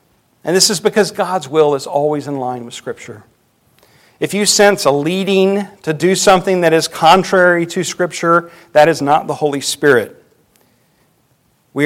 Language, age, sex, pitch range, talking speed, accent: English, 50-69, male, 135-175 Hz, 160 wpm, American